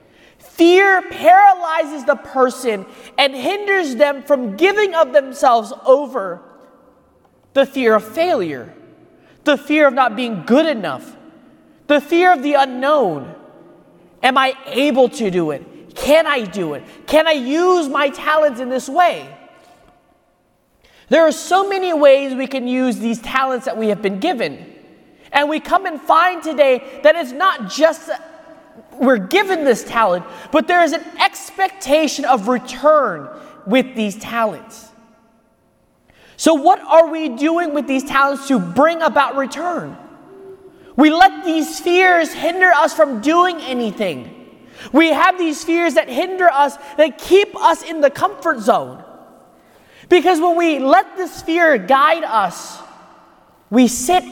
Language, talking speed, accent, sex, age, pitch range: English, 145 wpm, American, male, 30-49, 255-335 Hz